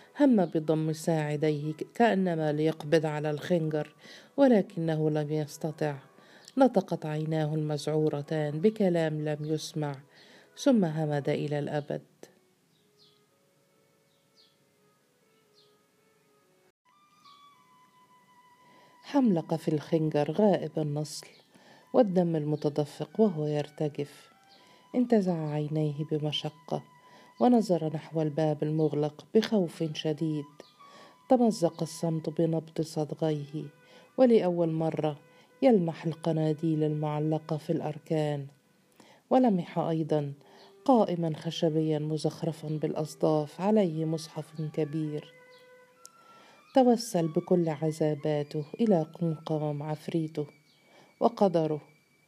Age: 40-59